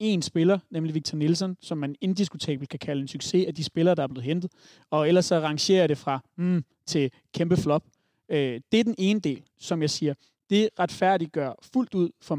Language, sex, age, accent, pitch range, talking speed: Danish, male, 30-49, native, 155-190 Hz, 210 wpm